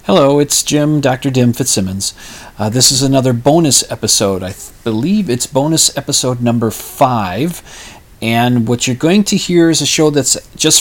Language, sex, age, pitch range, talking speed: English, male, 40-59, 105-140 Hz, 170 wpm